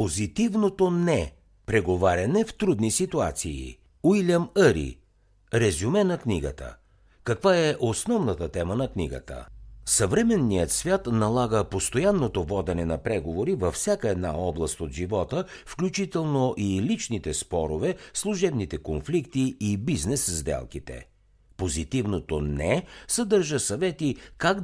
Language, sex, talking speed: Bulgarian, male, 110 wpm